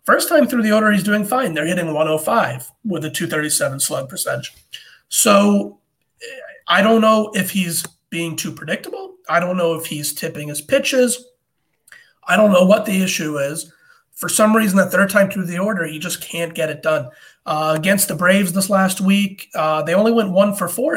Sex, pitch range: male, 150-205 Hz